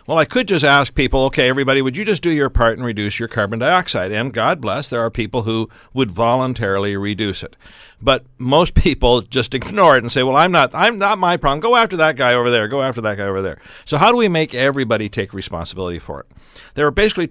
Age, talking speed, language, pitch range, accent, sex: 60-79, 245 wpm, English, 105-140 Hz, American, male